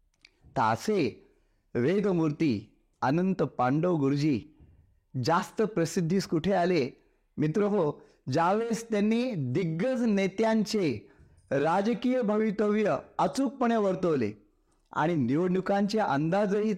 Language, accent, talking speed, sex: Marathi, native, 80 wpm, male